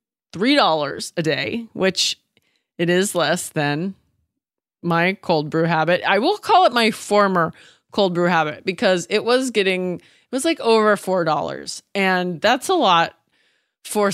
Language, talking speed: English, 150 wpm